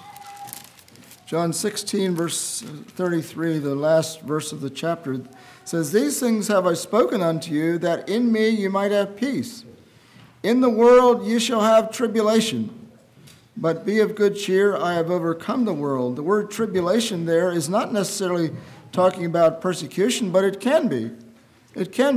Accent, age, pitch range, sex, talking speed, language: American, 50-69, 155-210 Hz, male, 155 wpm, English